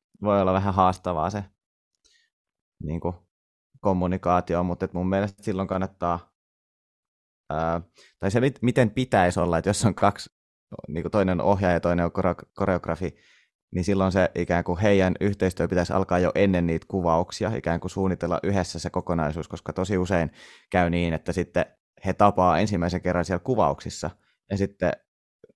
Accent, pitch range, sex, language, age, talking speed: native, 85-100 Hz, male, Finnish, 20-39, 155 wpm